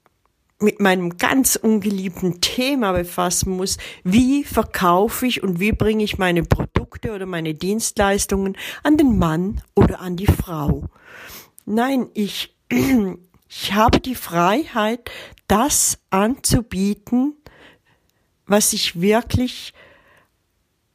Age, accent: 50-69, German